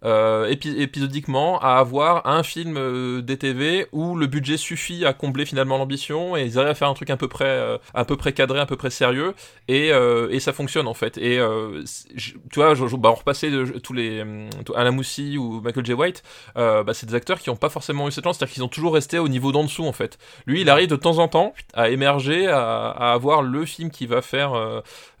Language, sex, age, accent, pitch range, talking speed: French, male, 20-39, French, 125-155 Hz, 240 wpm